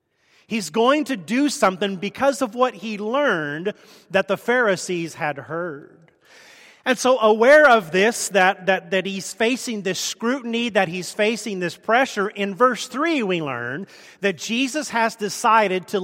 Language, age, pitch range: English, 40-59, 145-220 Hz